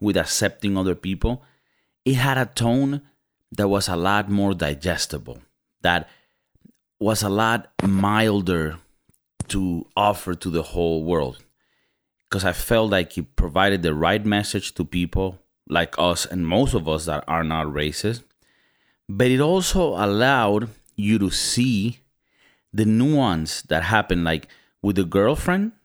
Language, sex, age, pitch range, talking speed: English, male, 30-49, 85-105 Hz, 140 wpm